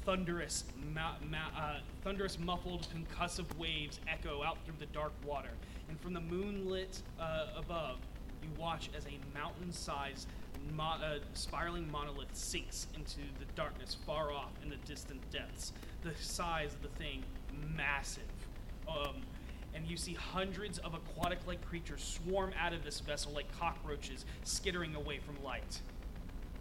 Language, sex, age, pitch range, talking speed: English, male, 30-49, 145-170 Hz, 145 wpm